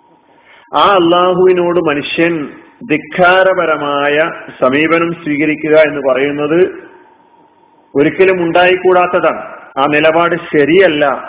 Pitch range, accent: 150-205 Hz, native